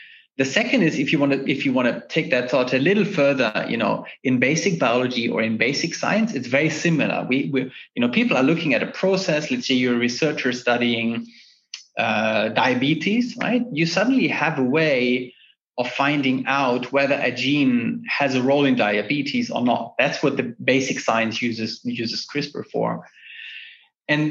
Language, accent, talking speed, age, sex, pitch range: English, German, 190 wpm, 30-49, male, 125-175 Hz